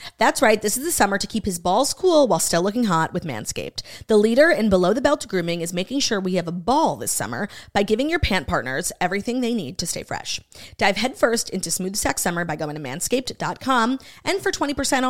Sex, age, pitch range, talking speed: female, 30-49, 180-245 Hz, 220 wpm